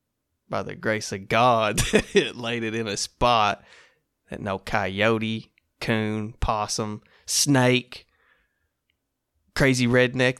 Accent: American